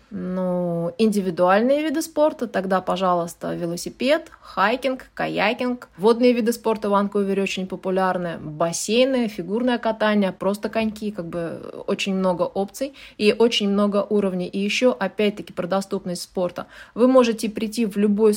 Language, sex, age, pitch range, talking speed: Russian, female, 20-39, 190-230 Hz, 135 wpm